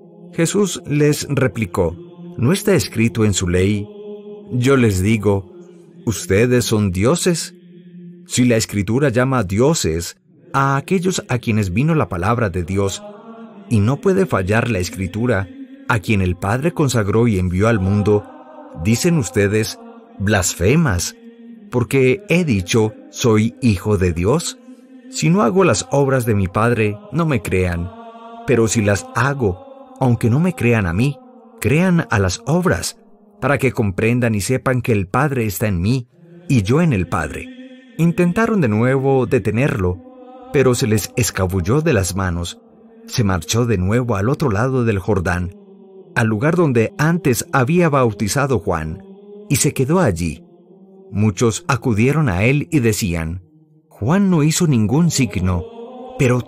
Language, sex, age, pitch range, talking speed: English, male, 40-59, 110-175 Hz, 150 wpm